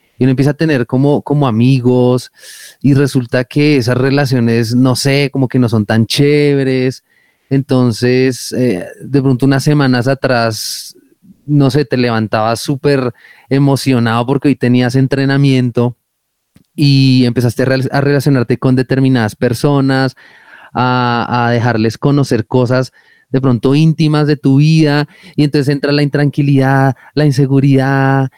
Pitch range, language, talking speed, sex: 125-150 Hz, Spanish, 135 wpm, male